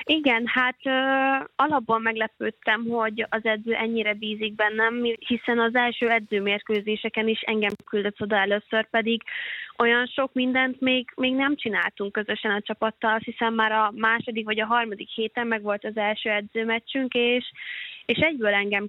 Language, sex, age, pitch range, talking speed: Hungarian, female, 20-39, 210-230 Hz, 155 wpm